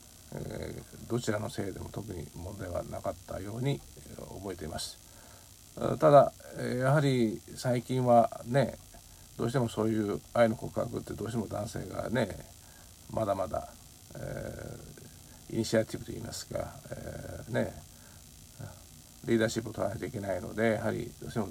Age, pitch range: 50-69, 95-115 Hz